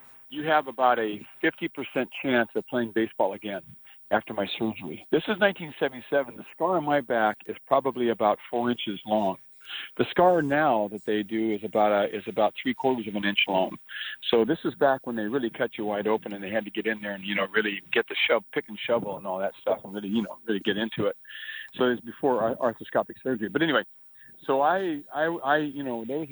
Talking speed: 230 wpm